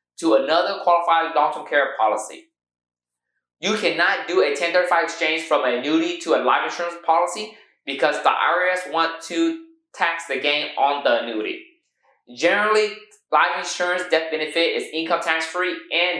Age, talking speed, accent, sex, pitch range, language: 20-39, 155 wpm, American, male, 150-200 Hz, English